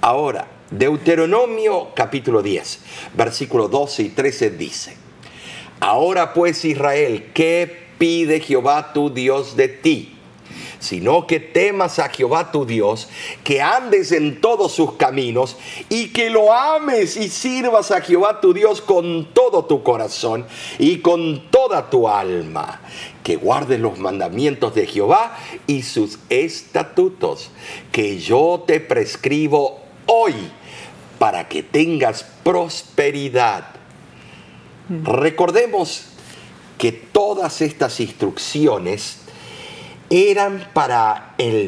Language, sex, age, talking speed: Spanish, male, 50-69, 110 wpm